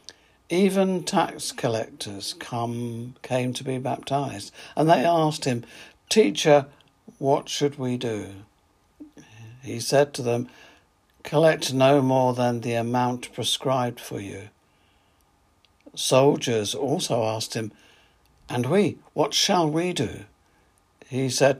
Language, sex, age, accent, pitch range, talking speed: English, male, 60-79, British, 105-135 Hz, 115 wpm